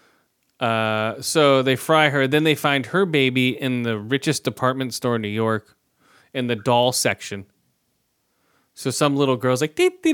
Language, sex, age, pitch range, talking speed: English, male, 20-39, 115-145 Hz, 170 wpm